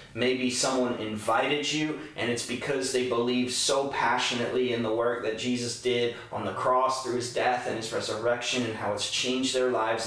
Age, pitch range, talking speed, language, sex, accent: 30-49, 110-125 Hz, 190 wpm, English, male, American